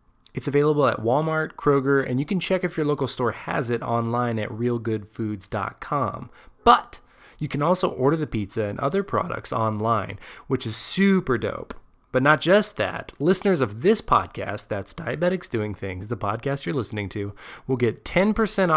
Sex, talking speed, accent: male, 170 wpm, American